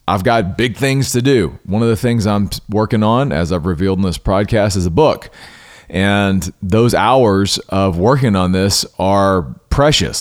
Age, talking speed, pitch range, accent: 40-59, 180 wpm, 90-115 Hz, American